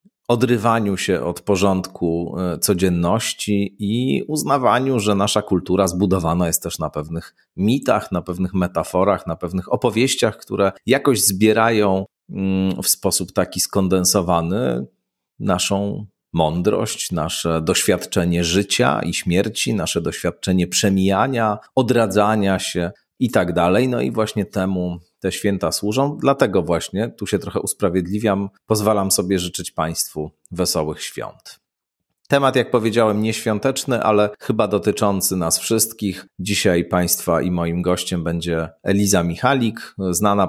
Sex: male